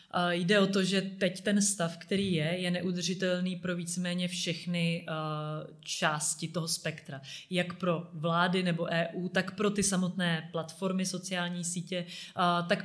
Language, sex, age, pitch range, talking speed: Czech, female, 30-49, 165-190 Hz, 140 wpm